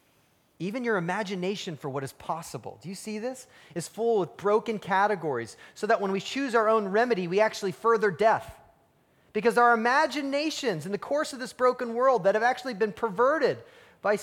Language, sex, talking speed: English, male, 185 wpm